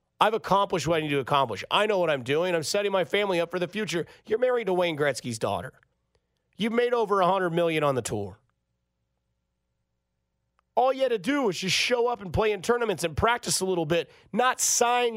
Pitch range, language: 170-230 Hz, English